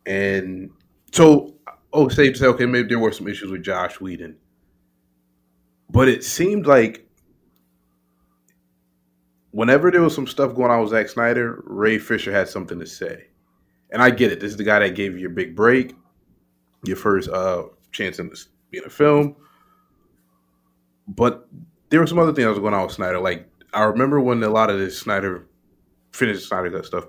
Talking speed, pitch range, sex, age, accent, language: 180 wpm, 75-120 Hz, male, 20-39, American, English